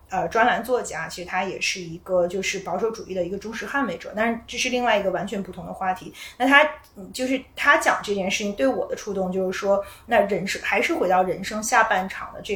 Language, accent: Chinese, native